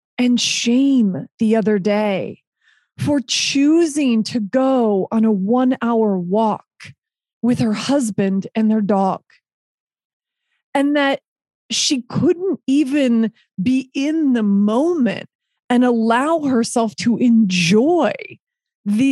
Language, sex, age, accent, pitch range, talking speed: English, female, 30-49, American, 215-270 Hz, 105 wpm